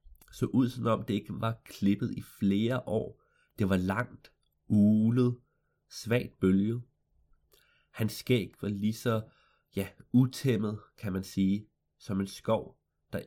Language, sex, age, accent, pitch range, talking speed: Danish, male, 30-49, native, 100-125 Hz, 135 wpm